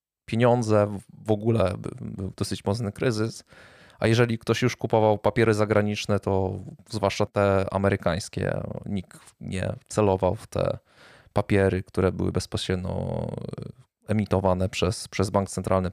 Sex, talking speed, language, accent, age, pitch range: male, 120 wpm, Polish, native, 20-39, 95-115 Hz